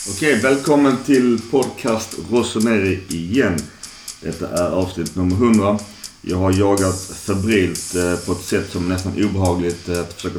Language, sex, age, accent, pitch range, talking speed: Swedish, male, 30-49, native, 90-105 Hz, 135 wpm